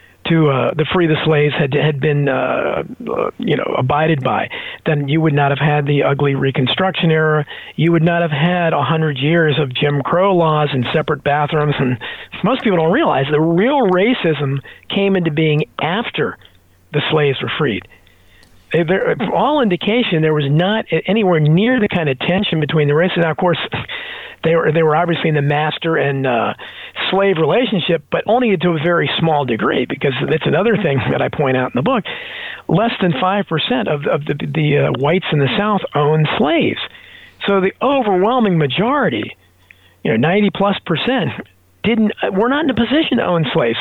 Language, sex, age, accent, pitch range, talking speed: English, male, 40-59, American, 150-195 Hz, 185 wpm